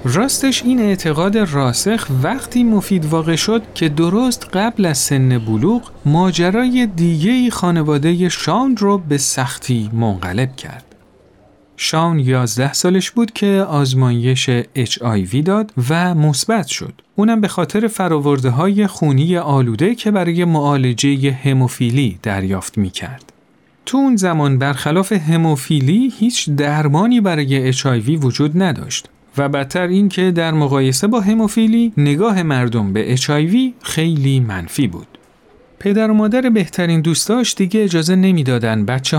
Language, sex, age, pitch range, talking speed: Persian, male, 40-59, 130-195 Hz, 125 wpm